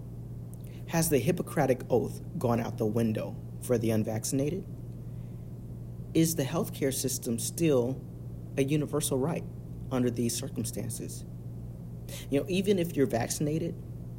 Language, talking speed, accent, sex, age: English, 120 wpm, American, male, 40-59